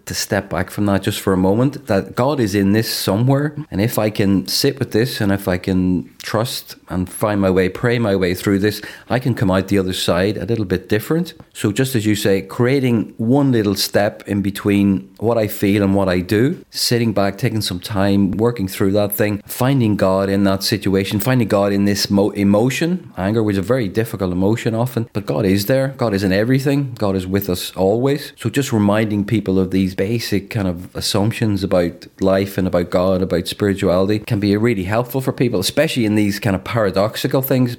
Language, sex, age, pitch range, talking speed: English, male, 30-49, 95-120 Hz, 215 wpm